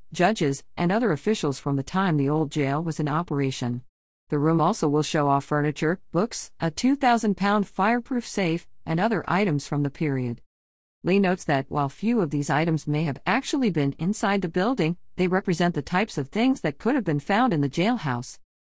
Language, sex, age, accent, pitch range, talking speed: English, female, 50-69, American, 140-185 Hz, 195 wpm